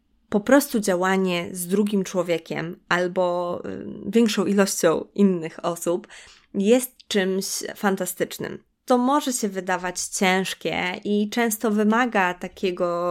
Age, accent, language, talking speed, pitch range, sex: 20-39, native, Polish, 105 wpm, 180-215 Hz, female